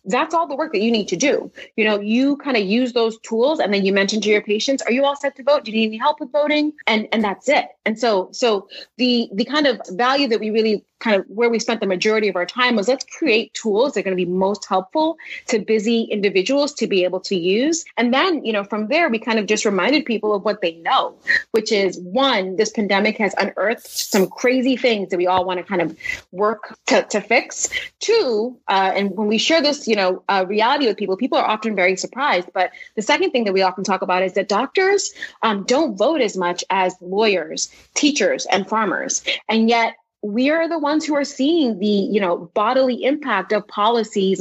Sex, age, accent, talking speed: female, 30-49, American, 235 wpm